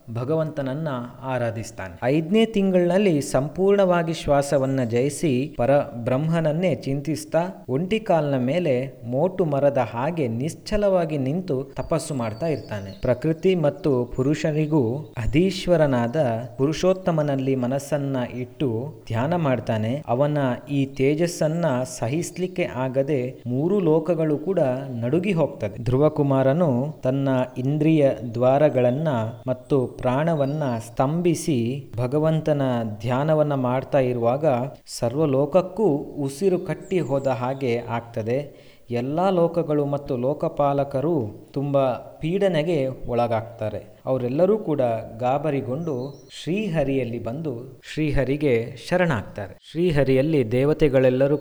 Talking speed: 85 wpm